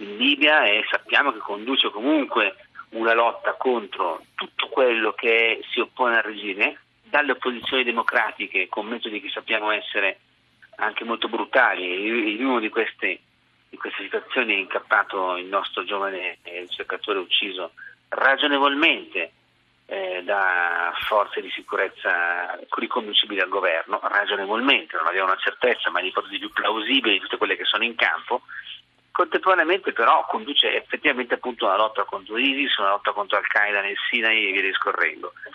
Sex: male